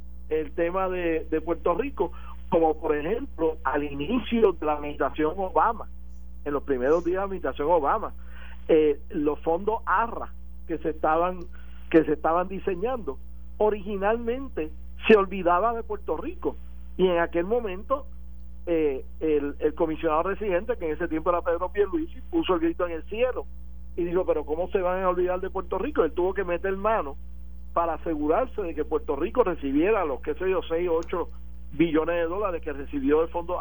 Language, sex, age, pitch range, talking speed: Spanish, male, 60-79, 140-190 Hz, 180 wpm